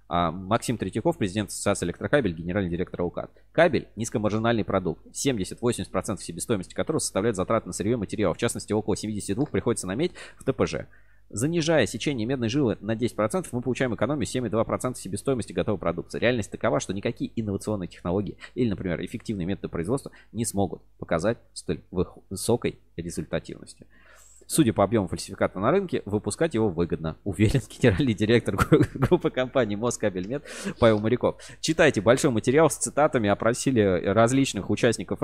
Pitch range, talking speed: 95-120 Hz, 140 wpm